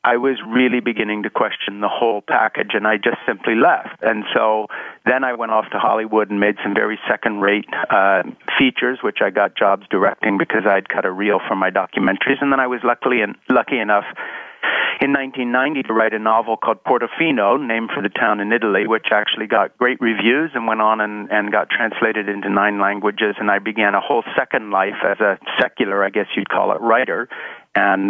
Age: 40-59